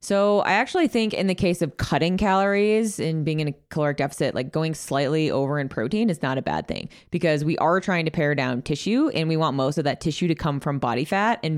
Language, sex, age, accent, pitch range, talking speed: English, female, 20-39, American, 145-185 Hz, 250 wpm